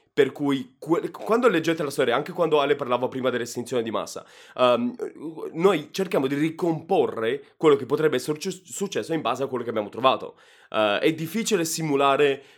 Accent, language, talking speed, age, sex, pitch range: native, Italian, 160 wpm, 20-39, male, 125-185 Hz